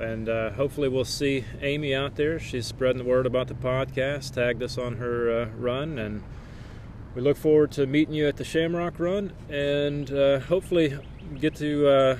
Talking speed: 185 wpm